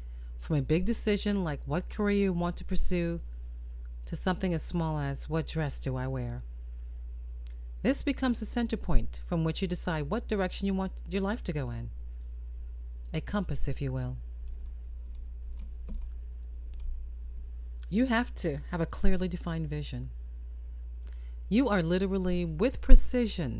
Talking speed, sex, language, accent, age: 145 wpm, female, English, American, 40-59